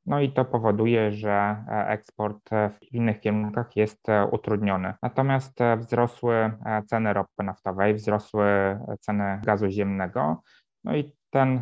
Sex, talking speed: male, 120 wpm